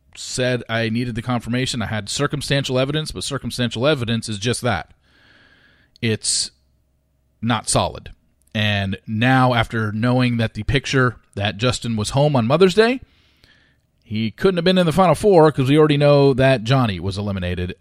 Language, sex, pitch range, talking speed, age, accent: English, male, 100-135 Hz, 160 wpm, 40-59, American